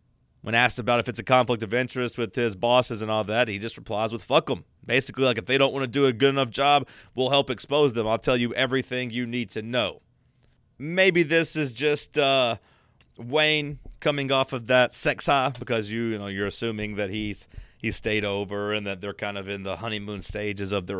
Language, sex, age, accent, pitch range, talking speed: English, male, 30-49, American, 105-130 Hz, 225 wpm